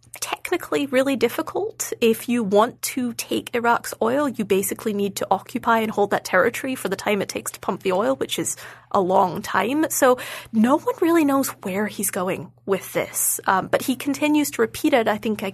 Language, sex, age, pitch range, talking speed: English, female, 20-39, 205-285 Hz, 205 wpm